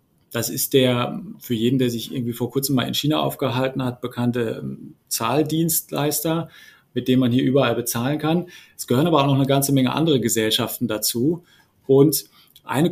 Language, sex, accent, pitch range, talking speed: German, male, German, 125-145 Hz, 170 wpm